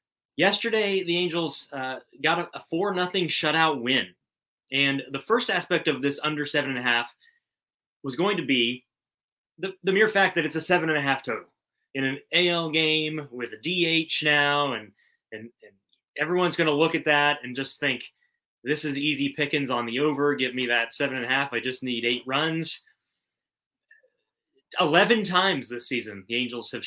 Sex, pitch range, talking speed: male, 125-165 Hz, 165 wpm